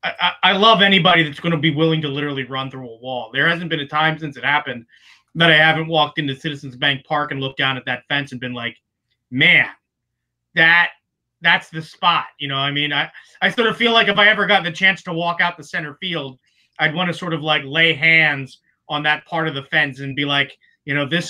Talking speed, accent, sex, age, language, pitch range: 250 wpm, American, male, 30-49, English, 135-165 Hz